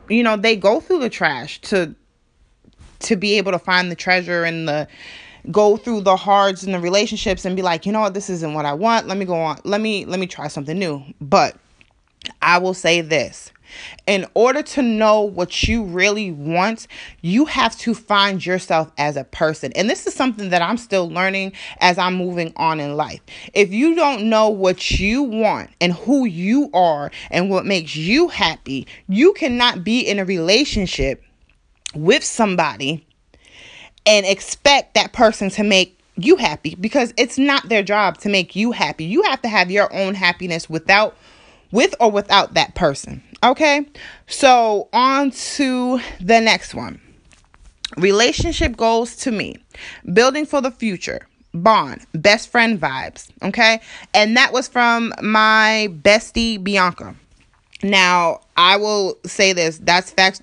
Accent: American